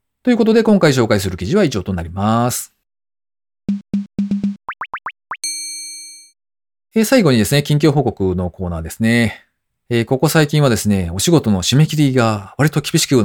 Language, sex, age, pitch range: Japanese, male, 40-59, 95-160 Hz